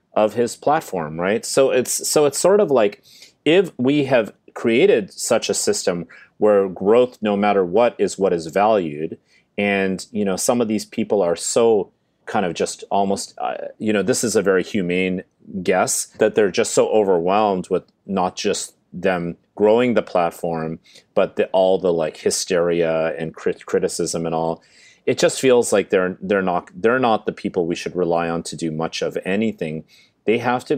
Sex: male